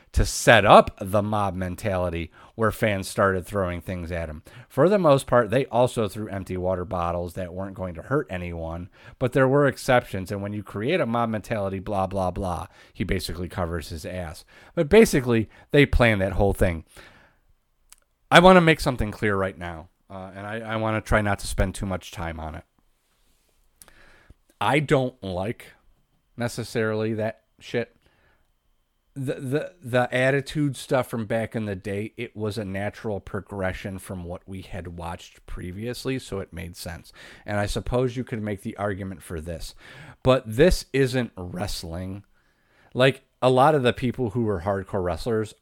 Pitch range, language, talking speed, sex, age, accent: 90-120 Hz, English, 175 wpm, male, 30-49, American